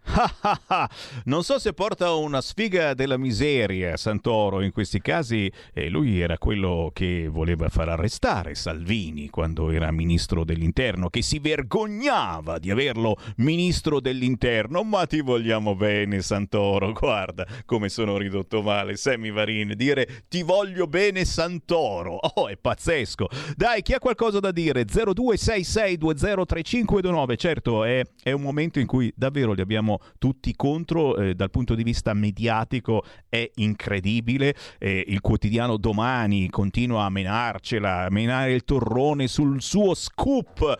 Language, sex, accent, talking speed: Italian, male, native, 135 wpm